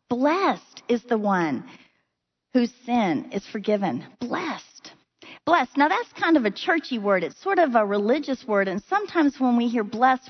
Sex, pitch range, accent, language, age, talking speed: female, 215-285 Hz, American, English, 40-59, 170 wpm